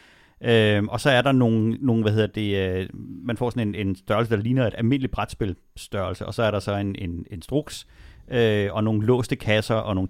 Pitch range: 100-125 Hz